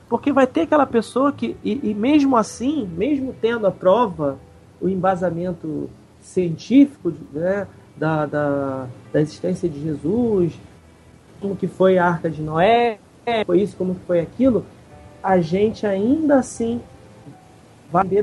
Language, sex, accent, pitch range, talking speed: Portuguese, male, Brazilian, 170-240 Hz, 140 wpm